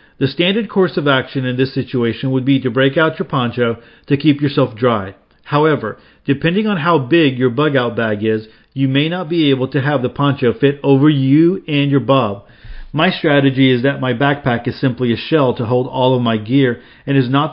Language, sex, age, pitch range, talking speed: English, male, 40-59, 125-145 Hz, 210 wpm